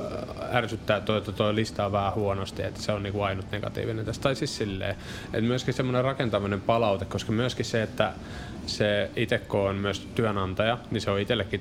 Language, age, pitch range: Finnish, 20-39, 95-110 Hz